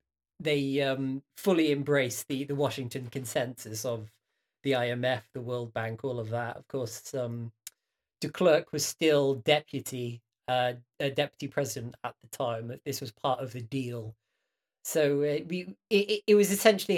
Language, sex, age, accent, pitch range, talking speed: English, male, 20-39, British, 120-145 Hz, 160 wpm